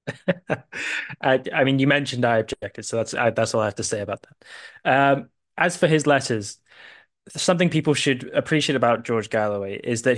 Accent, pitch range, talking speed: British, 115-135 Hz, 190 wpm